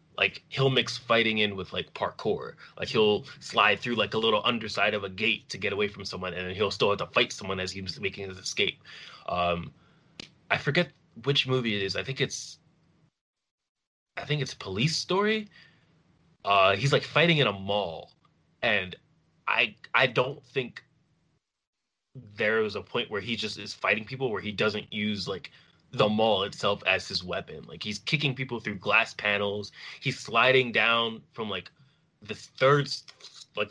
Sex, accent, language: male, American, English